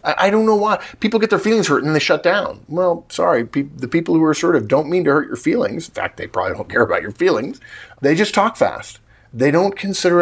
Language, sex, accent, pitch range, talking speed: English, male, American, 110-155 Hz, 245 wpm